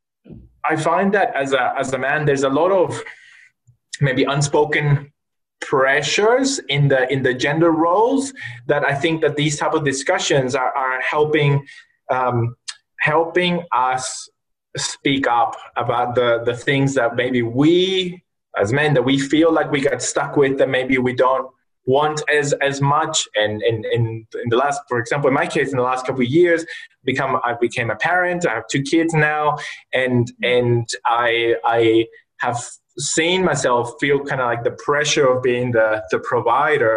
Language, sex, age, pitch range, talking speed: English, male, 20-39, 120-150 Hz, 170 wpm